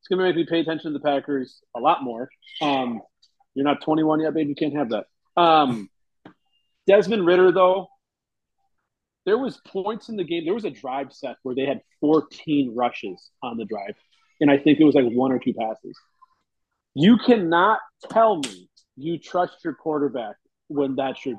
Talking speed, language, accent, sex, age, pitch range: 190 wpm, English, American, male, 30-49, 140-195 Hz